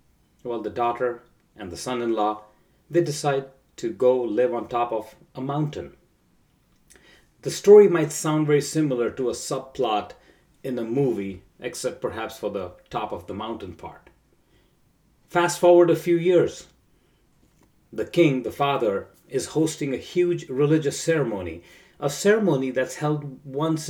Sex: male